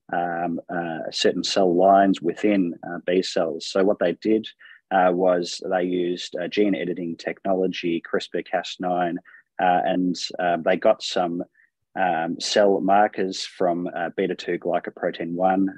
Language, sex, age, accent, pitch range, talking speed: English, male, 30-49, Australian, 85-95 Hz, 135 wpm